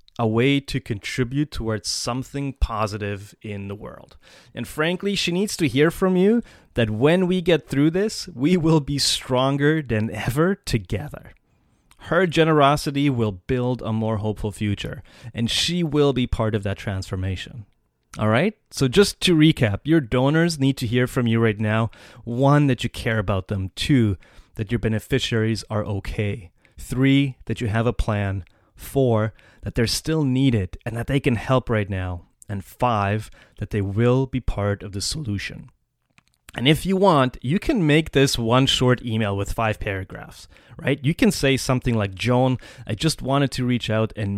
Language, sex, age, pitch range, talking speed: English, male, 30-49, 105-140 Hz, 175 wpm